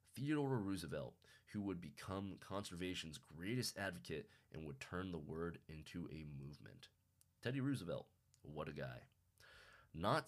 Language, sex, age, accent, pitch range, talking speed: English, male, 20-39, American, 80-100 Hz, 130 wpm